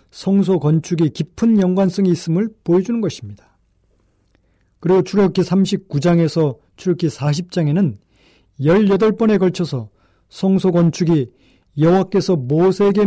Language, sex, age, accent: Korean, male, 40-59, native